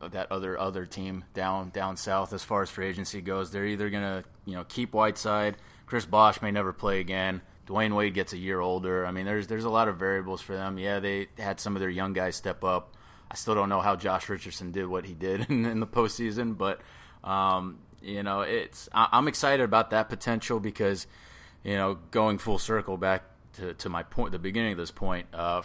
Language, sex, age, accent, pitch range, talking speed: English, male, 20-39, American, 95-110 Hz, 220 wpm